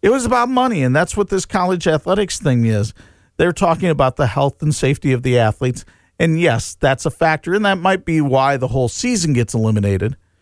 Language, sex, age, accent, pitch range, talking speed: English, male, 50-69, American, 95-155 Hz, 215 wpm